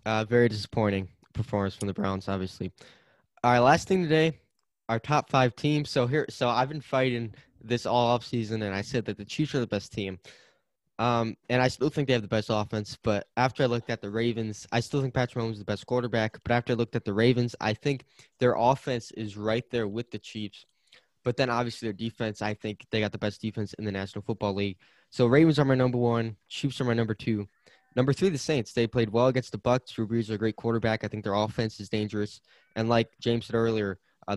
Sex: male